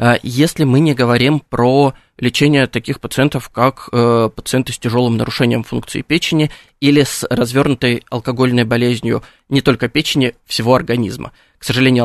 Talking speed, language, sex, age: 135 wpm, Russian, male, 20-39